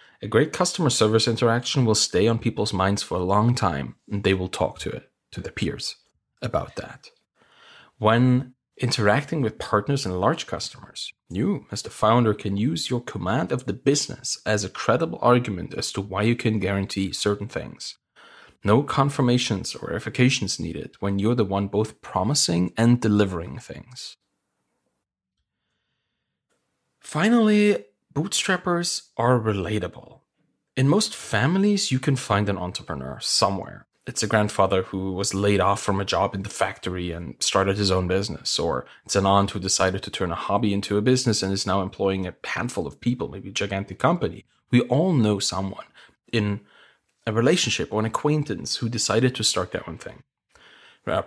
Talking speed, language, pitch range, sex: 165 wpm, English, 95-125 Hz, male